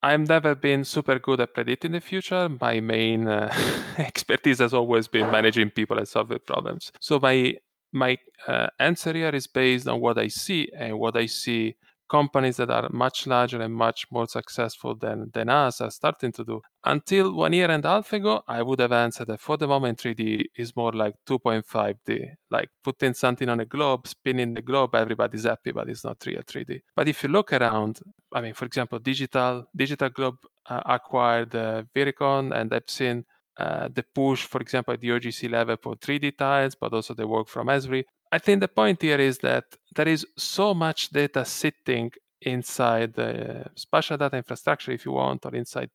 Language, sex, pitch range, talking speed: English, male, 120-145 Hz, 195 wpm